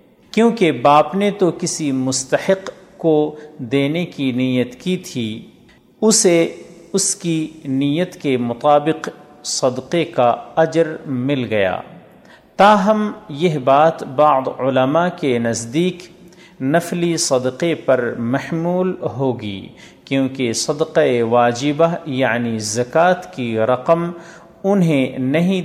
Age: 50-69